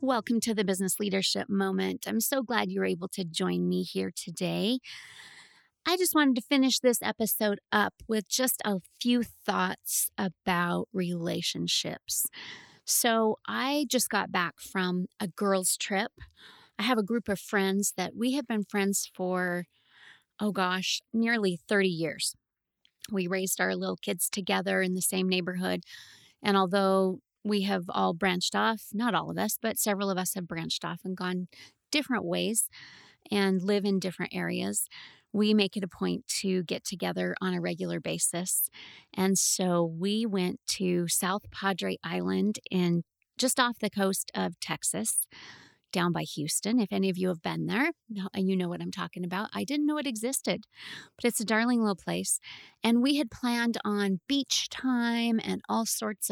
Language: English